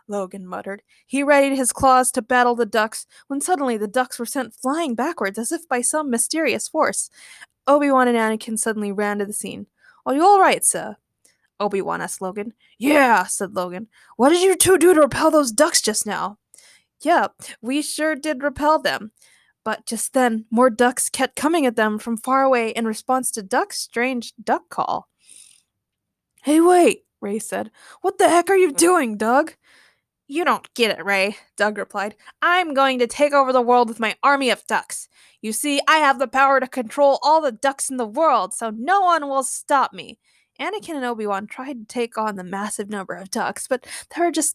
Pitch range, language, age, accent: 215-295 Hz, English, 20-39, American